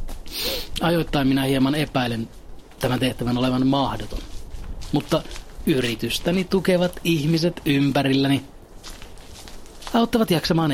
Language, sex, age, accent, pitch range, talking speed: Finnish, male, 30-49, native, 125-160 Hz, 85 wpm